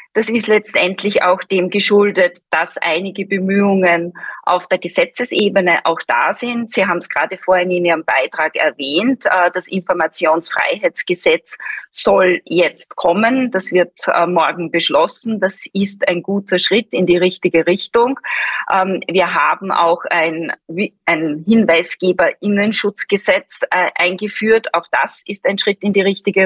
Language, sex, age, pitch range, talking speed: German, female, 20-39, 180-215 Hz, 125 wpm